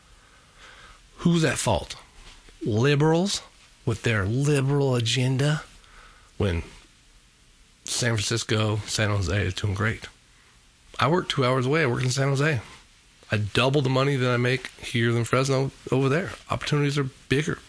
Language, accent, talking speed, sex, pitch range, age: English, American, 140 wpm, male, 110-140 Hz, 40-59